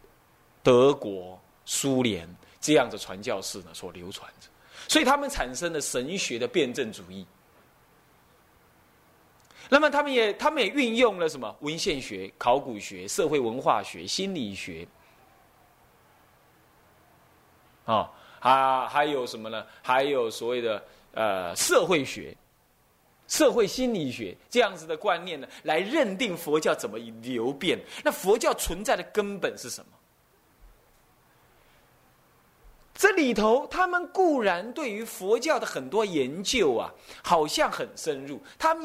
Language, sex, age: Chinese, male, 30-49